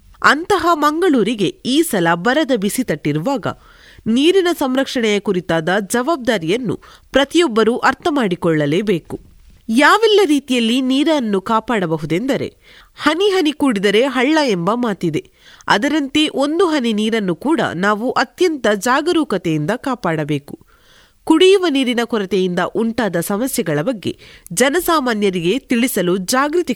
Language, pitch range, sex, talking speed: Kannada, 185-290 Hz, female, 95 wpm